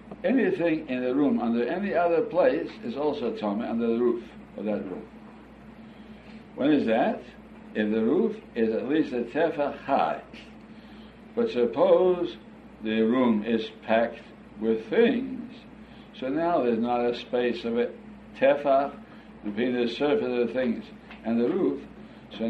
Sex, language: male, English